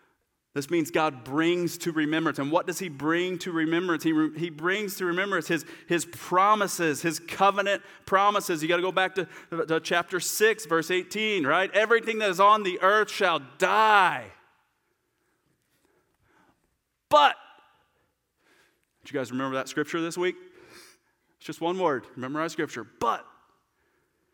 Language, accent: English, American